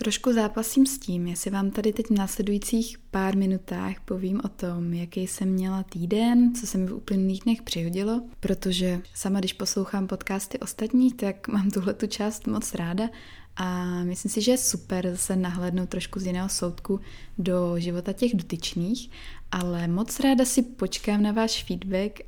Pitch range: 180-220 Hz